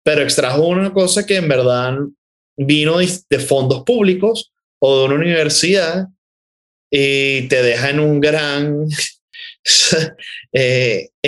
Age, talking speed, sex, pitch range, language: 20-39, 120 wpm, male, 120-160 Hz, Spanish